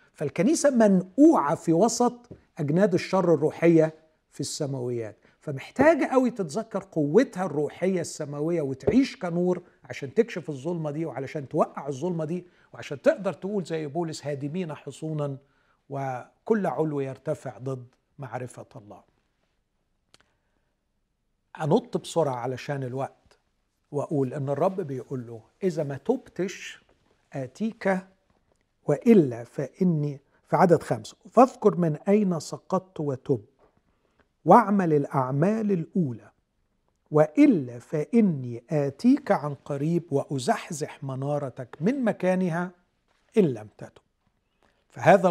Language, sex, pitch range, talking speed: Arabic, male, 140-195 Hz, 100 wpm